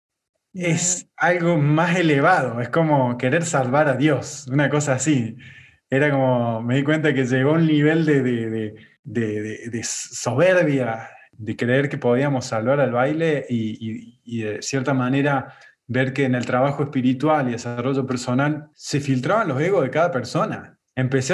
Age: 20-39